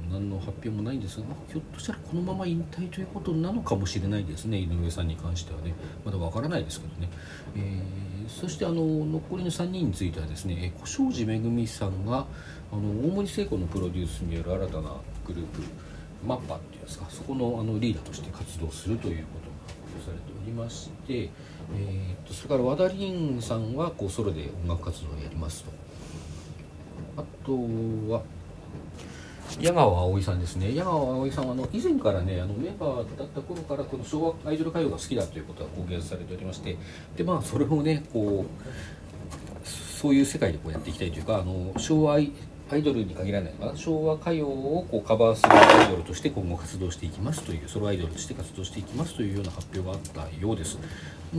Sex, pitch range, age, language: male, 85-135 Hz, 40-59, Japanese